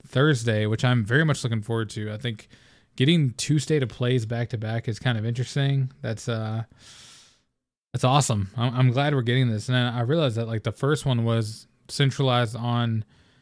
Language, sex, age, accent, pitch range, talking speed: English, male, 20-39, American, 110-130 Hz, 190 wpm